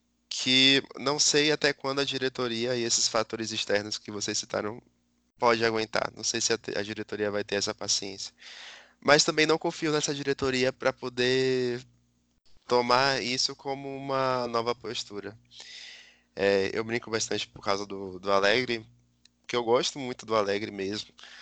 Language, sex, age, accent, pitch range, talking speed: Portuguese, male, 20-39, Brazilian, 105-130 Hz, 155 wpm